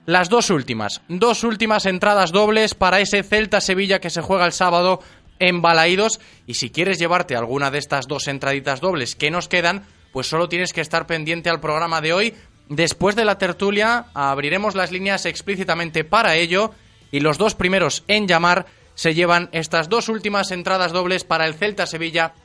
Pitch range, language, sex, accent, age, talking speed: 160-195 Hz, Spanish, male, Spanish, 20-39, 175 wpm